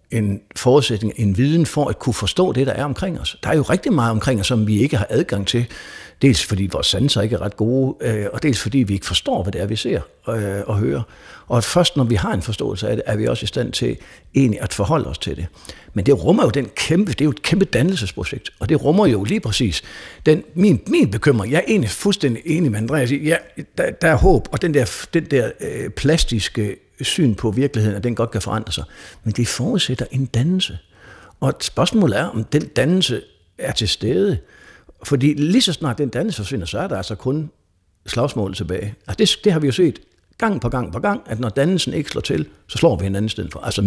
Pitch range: 105-145 Hz